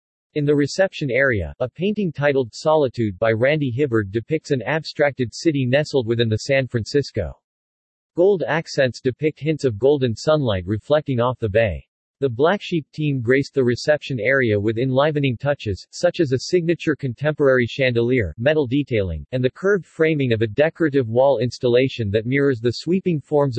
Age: 40-59